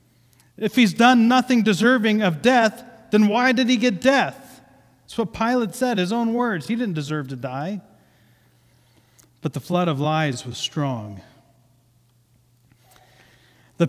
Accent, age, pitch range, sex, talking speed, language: American, 40-59, 125-175 Hz, male, 145 wpm, English